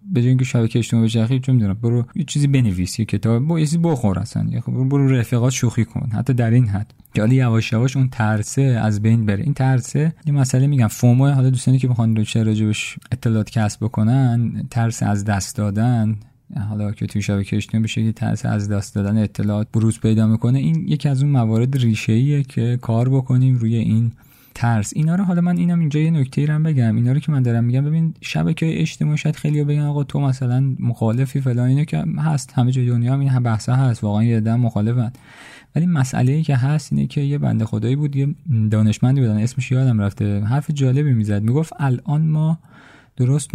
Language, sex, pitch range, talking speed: Persian, male, 110-140 Hz, 195 wpm